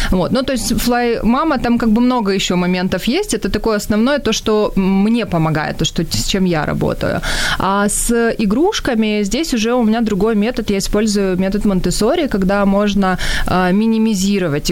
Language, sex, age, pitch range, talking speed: Ukrainian, female, 20-39, 180-225 Hz, 165 wpm